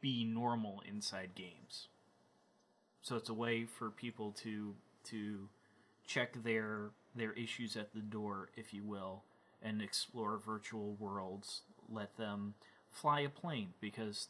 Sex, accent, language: male, American, English